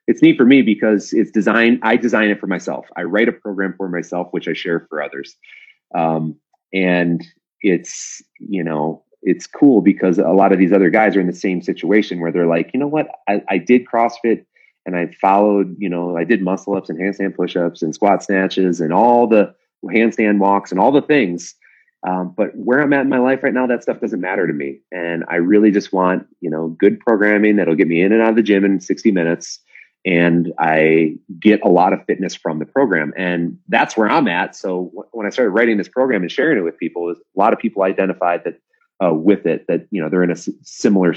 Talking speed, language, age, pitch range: 230 wpm, English, 30-49, 85-110 Hz